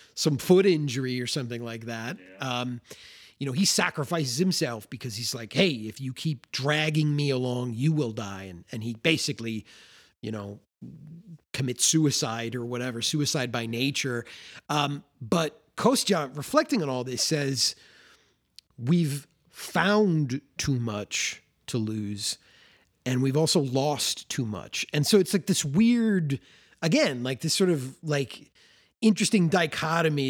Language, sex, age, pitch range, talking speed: English, male, 30-49, 125-160 Hz, 145 wpm